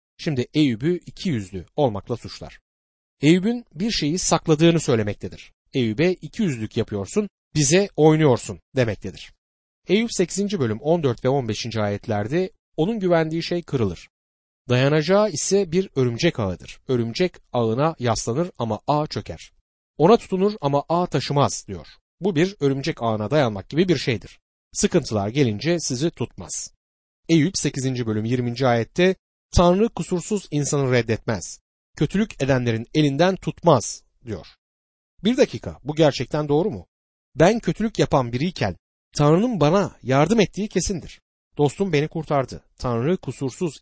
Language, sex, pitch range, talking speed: Turkish, male, 115-170 Hz, 125 wpm